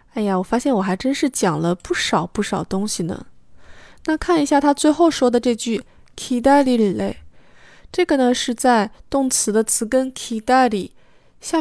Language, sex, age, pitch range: Chinese, female, 20-39, 200-260 Hz